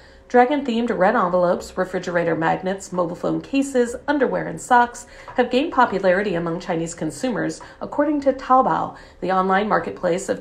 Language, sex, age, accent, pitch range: Chinese, female, 40-59, American, 175-240 Hz